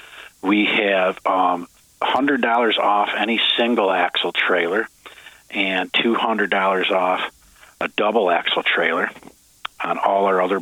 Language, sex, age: Japanese, male, 50-69